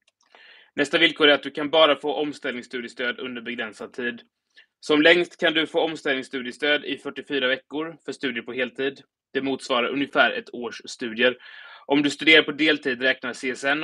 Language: Swedish